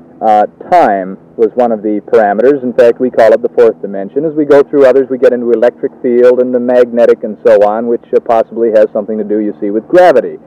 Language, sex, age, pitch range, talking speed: English, male, 40-59, 115-185 Hz, 240 wpm